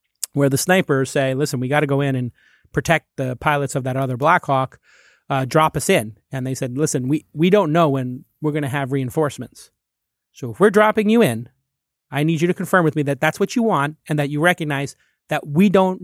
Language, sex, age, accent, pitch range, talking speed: English, male, 30-49, American, 130-160 Hz, 230 wpm